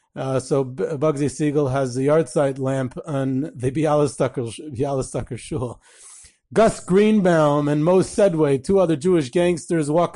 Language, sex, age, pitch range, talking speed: English, male, 30-49, 135-170 Hz, 140 wpm